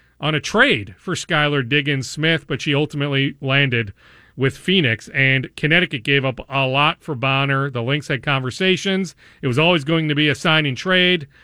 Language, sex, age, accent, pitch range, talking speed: English, male, 40-59, American, 135-180 Hz, 175 wpm